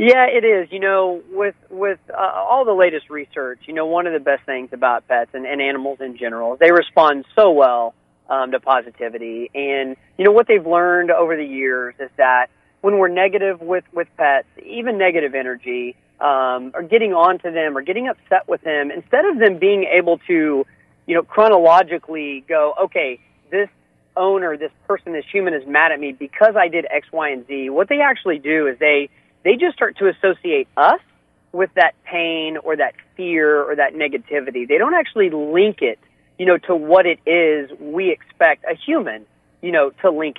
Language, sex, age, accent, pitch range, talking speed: English, male, 40-59, American, 145-200 Hz, 195 wpm